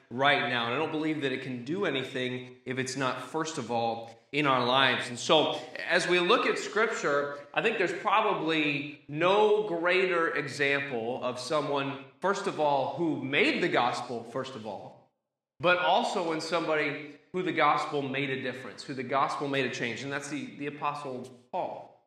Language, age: English, 30-49